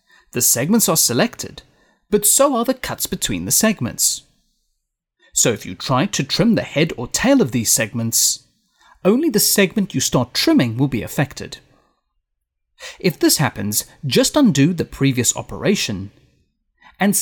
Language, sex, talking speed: English, male, 150 wpm